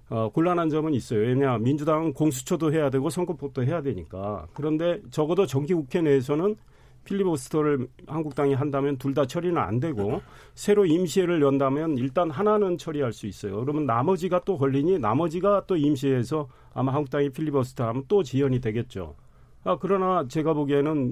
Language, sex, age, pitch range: Korean, male, 40-59, 130-180 Hz